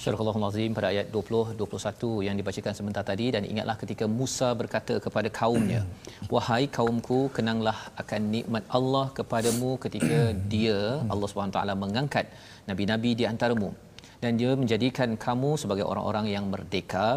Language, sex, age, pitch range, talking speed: Malayalam, male, 40-59, 105-120 Hz, 145 wpm